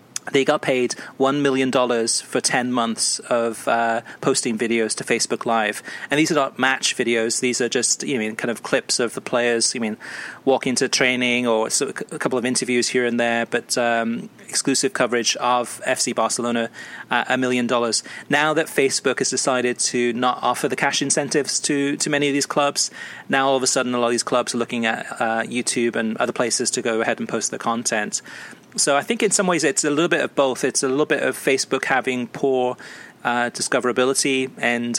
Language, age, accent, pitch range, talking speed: English, 30-49, British, 115-130 Hz, 210 wpm